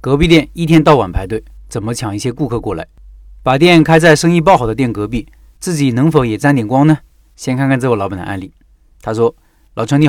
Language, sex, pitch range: Chinese, male, 115-155 Hz